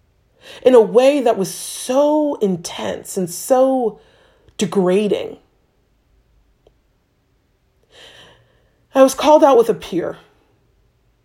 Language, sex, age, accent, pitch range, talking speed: English, female, 30-49, American, 145-205 Hz, 90 wpm